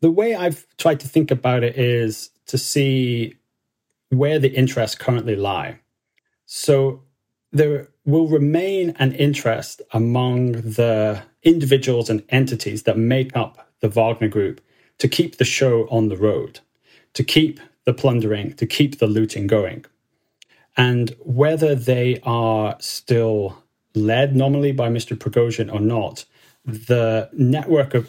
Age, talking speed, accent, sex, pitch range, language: 30-49, 135 wpm, British, male, 115-135 Hz, English